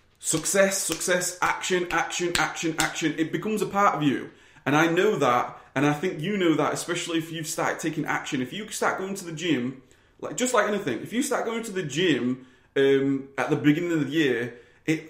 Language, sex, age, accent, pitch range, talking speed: English, male, 30-49, British, 145-190 Hz, 220 wpm